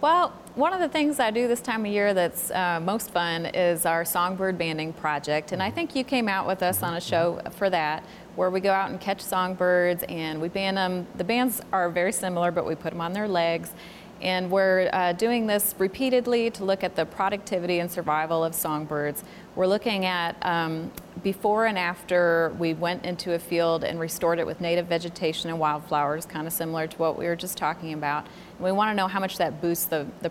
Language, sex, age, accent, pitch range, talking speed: English, female, 30-49, American, 165-195 Hz, 220 wpm